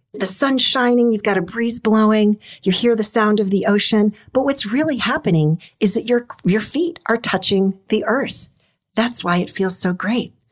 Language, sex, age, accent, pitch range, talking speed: English, female, 50-69, American, 165-230 Hz, 195 wpm